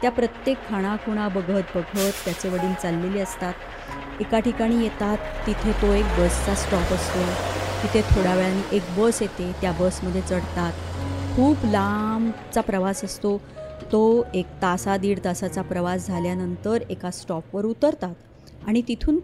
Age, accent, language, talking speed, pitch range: 30-49, native, Marathi, 135 wpm, 180-240 Hz